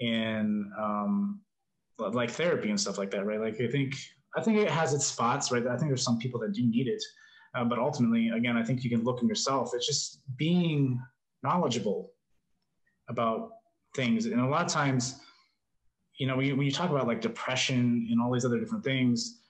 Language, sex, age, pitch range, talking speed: English, male, 20-39, 125-165 Hz, 205 wpm